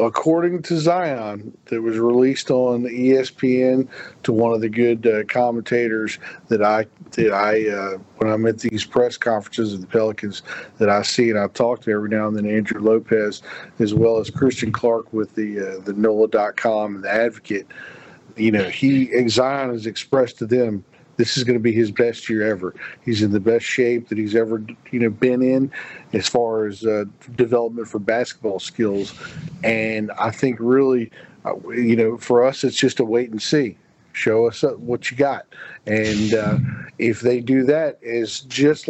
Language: English